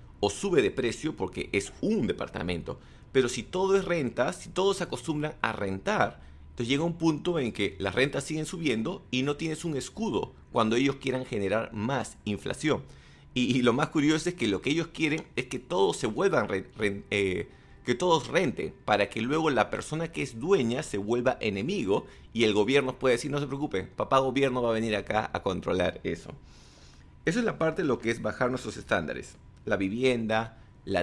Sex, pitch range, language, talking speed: male, 100-135 Hz, English, 200 wpm